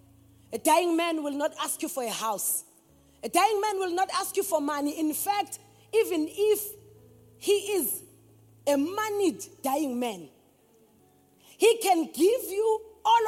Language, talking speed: English, 155 wpm